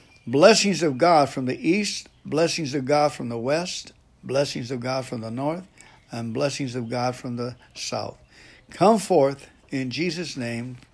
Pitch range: 120-175 Hz